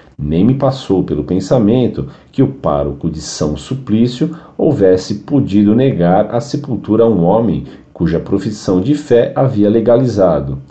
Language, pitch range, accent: Portuguese, 95-130 Hz, Brazilian